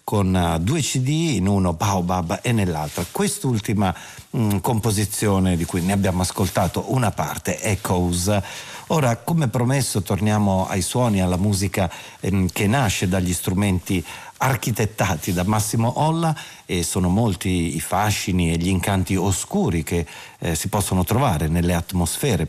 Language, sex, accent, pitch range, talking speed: Italian, male, native, 90-115 Hz, 135 wpm